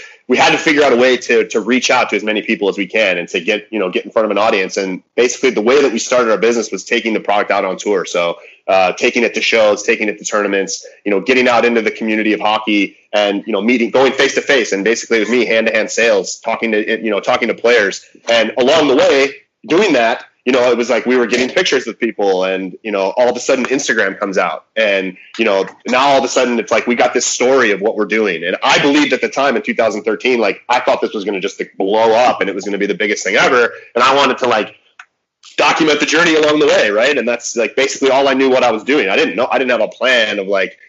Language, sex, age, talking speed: English, male, 30-49, 285 wpm